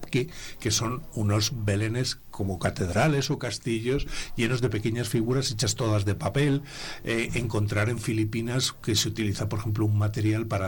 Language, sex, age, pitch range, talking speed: Spanish, male, 60-79, 105-130 Hz, 165 wpm